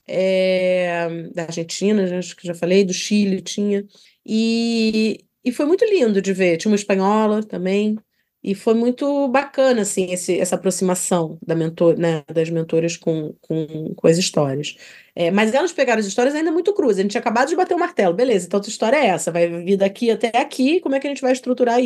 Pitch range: 185-245 Hz